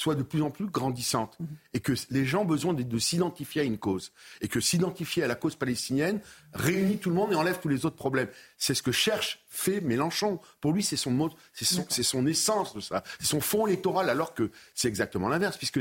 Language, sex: French, male